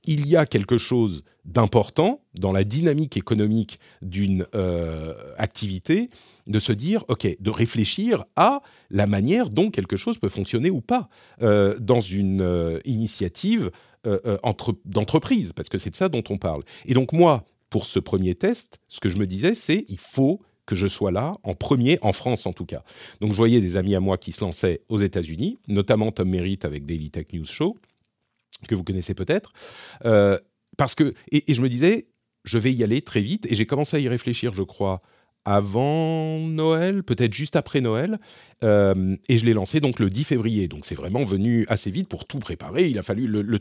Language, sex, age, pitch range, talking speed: French, male, 40-59, 95-135 Hz, 200 wpm